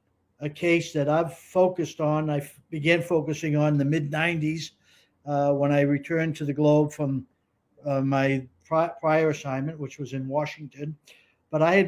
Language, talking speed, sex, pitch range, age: English, 170 wpm, male, 135-160 Hz, 60-79